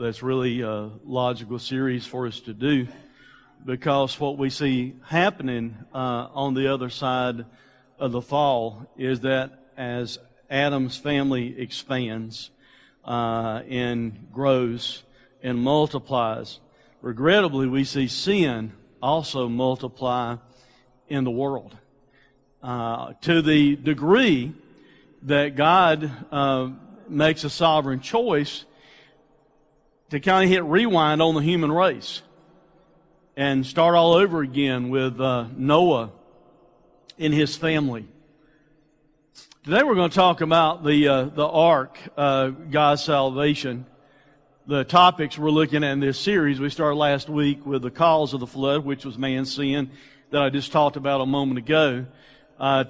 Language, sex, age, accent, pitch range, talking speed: English, male, 50-69, American, 130-155 Hz, 130 wpm